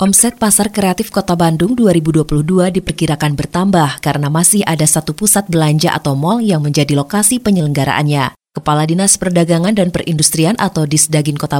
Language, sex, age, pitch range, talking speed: Indonesian, female, 20-39, 165-240 Hz, 145 wpm